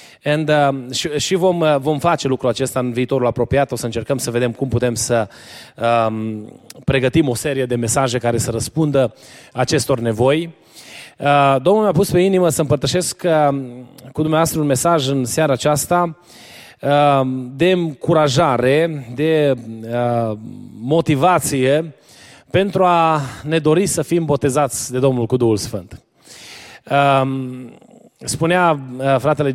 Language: Romanian